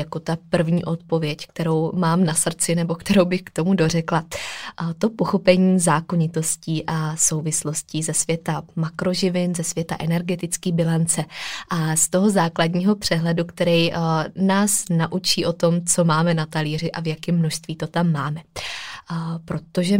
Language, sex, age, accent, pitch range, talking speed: Czech, female, 20-39, native, 165-185 Hz, 145 wpm